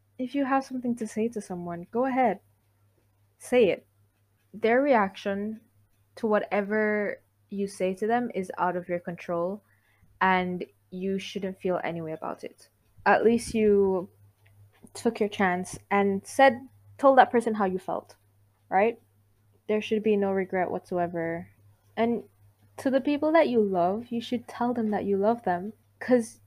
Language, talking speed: English, 160 wpm